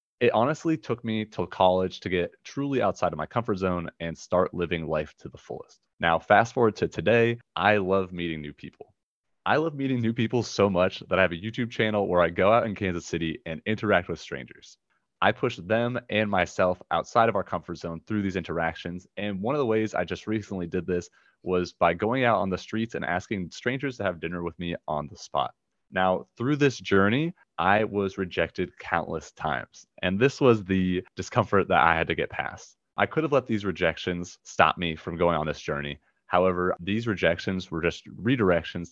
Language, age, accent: English, 30-49, American